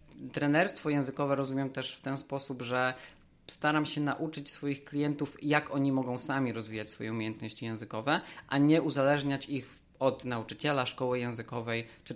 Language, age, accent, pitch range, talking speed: Polish, 20-39, native, 120-145 Hz, 150 wpm